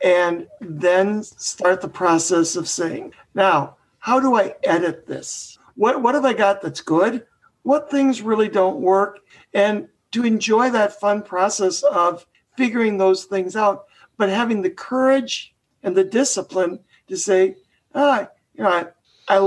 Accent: American